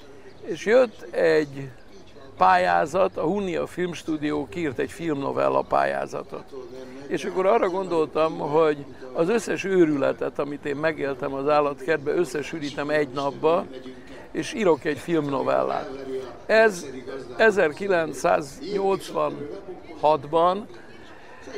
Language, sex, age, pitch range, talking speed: Hungarian, male, 60-79, 145-175 Hz, 90 wpm